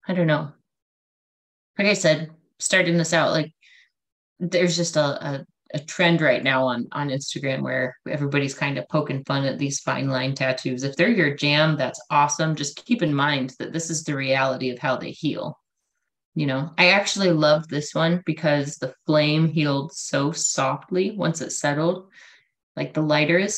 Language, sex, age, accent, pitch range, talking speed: English, female, 20-39, American, 145-180 Hz, 180 wpm